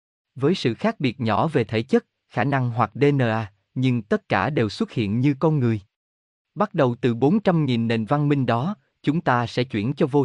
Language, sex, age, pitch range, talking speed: Vietnamese, male, 20-39, 110-155 Hz, 205 wpm